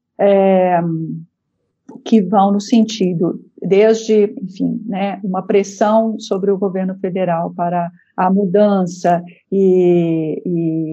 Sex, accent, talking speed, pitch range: female, Brazilian, 100 wpm, 185-215 Hz